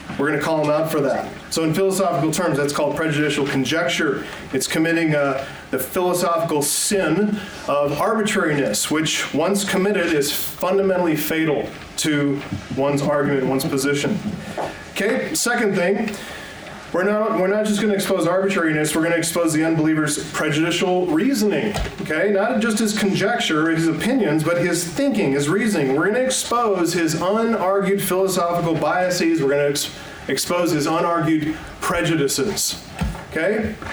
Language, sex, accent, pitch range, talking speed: English, male, American, 145-195 Hz, 145 wpm